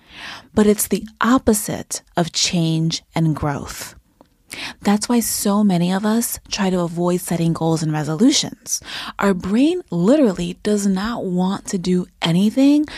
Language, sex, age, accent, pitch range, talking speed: English, female, 20-39, American, 165-225 Hz, 140 wpm